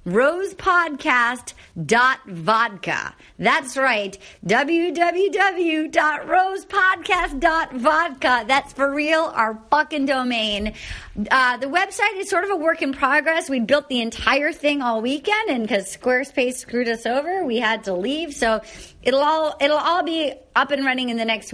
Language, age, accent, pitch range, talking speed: English, 40-59, American, 230-315 Hz, 140 wpm